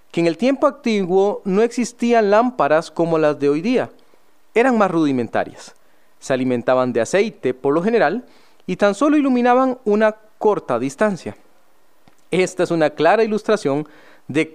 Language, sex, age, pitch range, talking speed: Spanish, male, 40-59, 160-235 Hz, 150 wpm